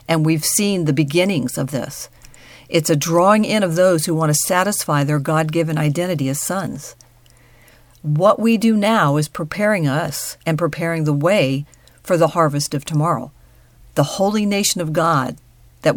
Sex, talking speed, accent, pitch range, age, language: female, 165 wpm, American, 135-175 Hz, 50-69, English